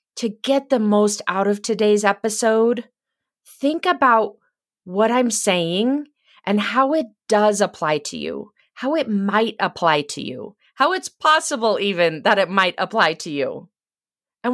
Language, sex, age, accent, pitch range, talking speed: English, female, 30-49, American, 195-255 Hz, 155 wpm